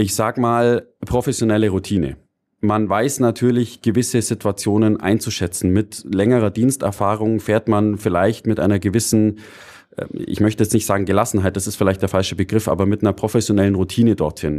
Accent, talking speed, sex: German, 155 wpm, male